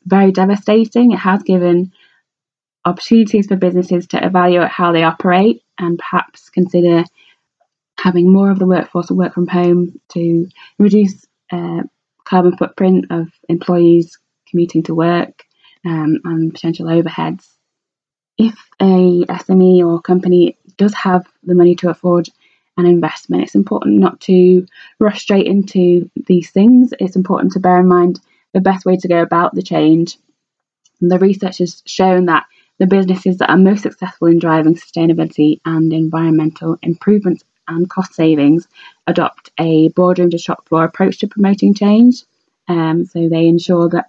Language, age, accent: English, 20-39, British